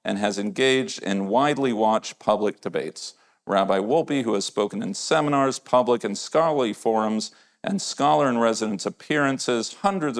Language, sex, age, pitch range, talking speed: English, male, 40-59, 100-125 Hz, 135 wpm